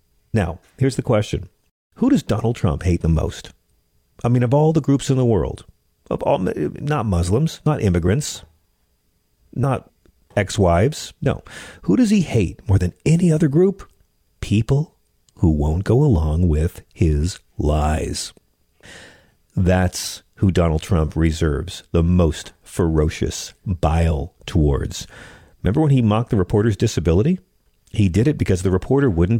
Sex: male